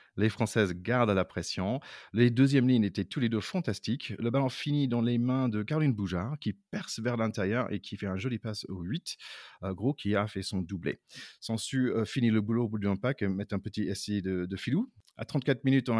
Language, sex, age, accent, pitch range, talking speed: French, male, 30-49, French, 100-125 Hz, 235 wpm